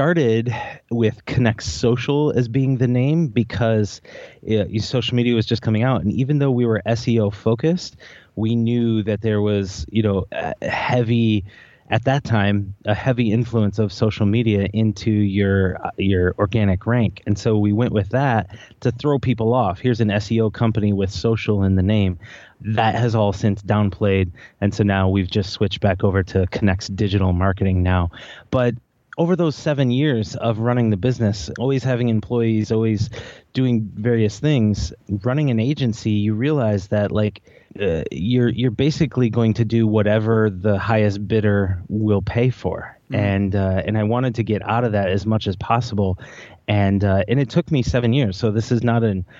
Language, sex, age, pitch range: English, male, 30-49, 100-120 Hz